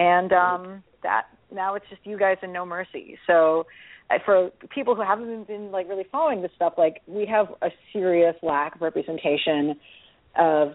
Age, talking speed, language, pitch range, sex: 40-59, 185 wpm, English, 165-205 Hz, female